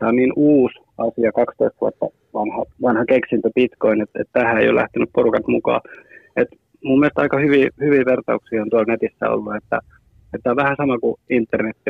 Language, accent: Finnish, native